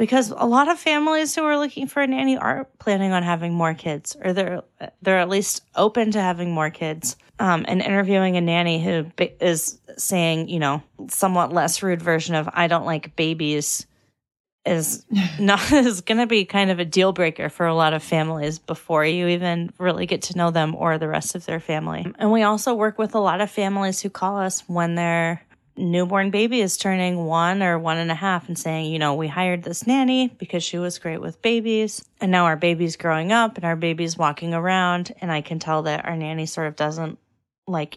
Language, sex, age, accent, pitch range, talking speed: English, female, 30-49, American, 165-205 Hz, 215 wpm